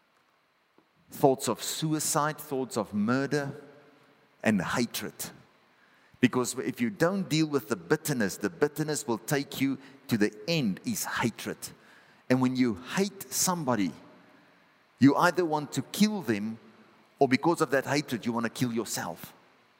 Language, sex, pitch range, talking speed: English, male, 135-175 Hz, 140 wpm